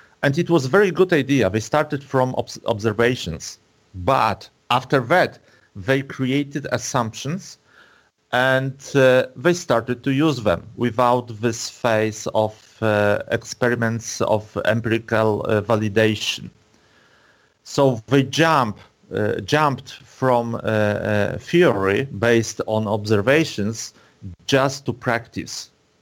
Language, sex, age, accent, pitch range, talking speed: English, male, 40-59, Polish, 110-135 Hz, 115 wpm